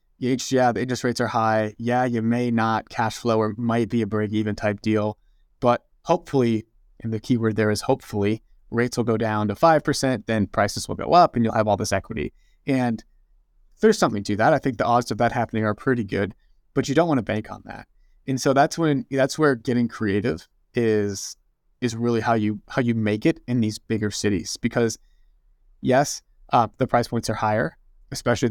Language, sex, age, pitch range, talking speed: English, male, 20-39, 110-125 Hz, 205 wpm